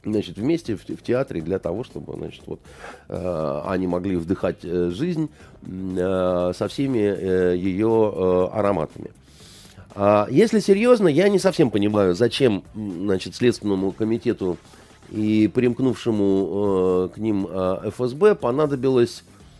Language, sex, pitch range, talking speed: Russian, male, 105-140 Hz, 125 wpm